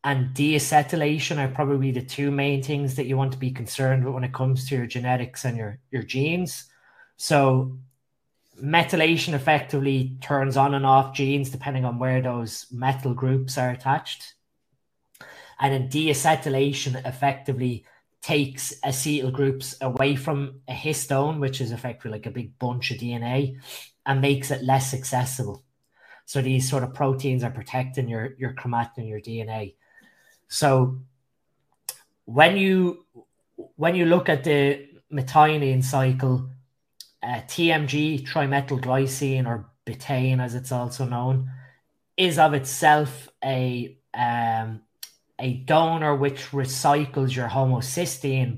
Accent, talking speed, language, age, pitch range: Irish, 135 wpm, English, 20-39, 125-140 Hz